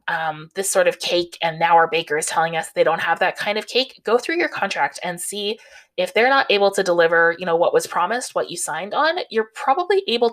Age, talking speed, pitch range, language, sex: 20-39, 250 wpm, 170-220 Hz, English, female